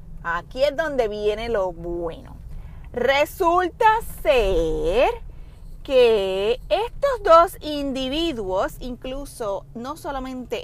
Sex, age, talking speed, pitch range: female, 30-49, 85 wpm, 195-300 Hz